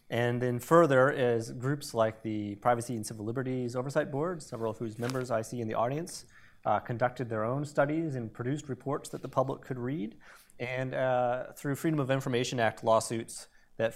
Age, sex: 30-49, male